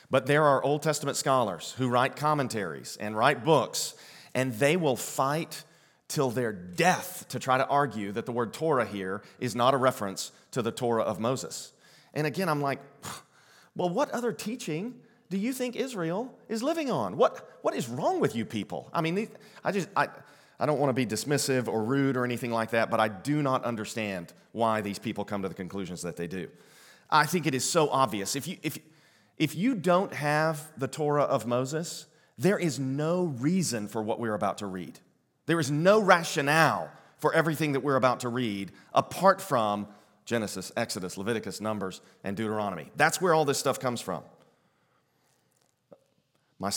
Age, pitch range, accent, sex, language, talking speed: 40-59, 115-160 Hz, American, male, English, 185 wpm